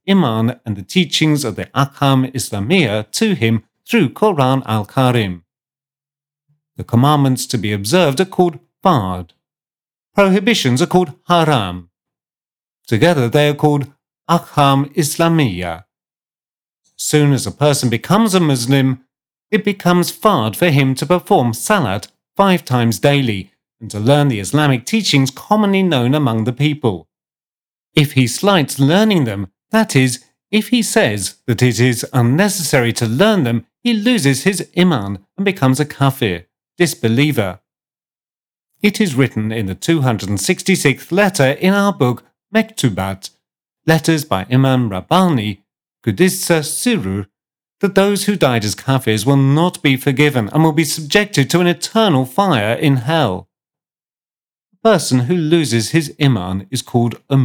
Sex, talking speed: male, 140 wpm